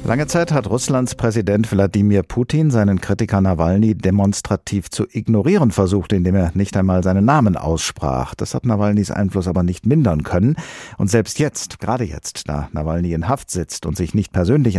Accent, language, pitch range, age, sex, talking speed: German, German, 90-120 Hz, 50-69, male, 175 wpm